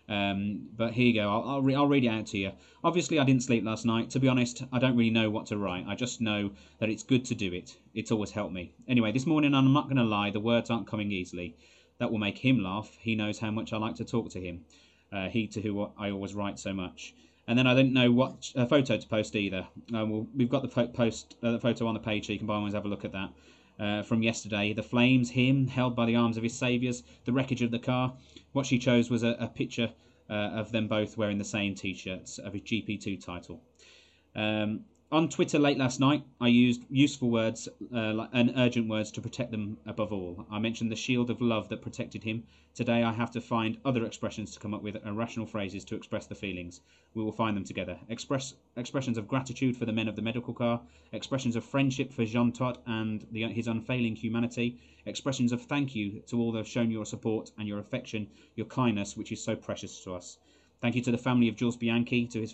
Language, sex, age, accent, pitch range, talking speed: English, male, 30-49, British, 105-120 Hz, 240 wpm